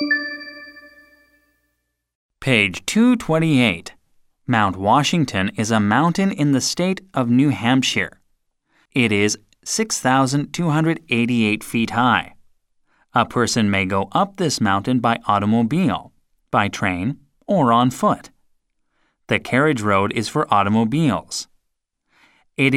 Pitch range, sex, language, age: 110-160 Hz, male, Korean, 30-49